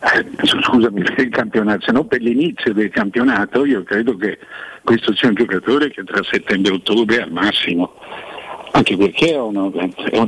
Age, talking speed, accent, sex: 60-79, 170 wpm, native, male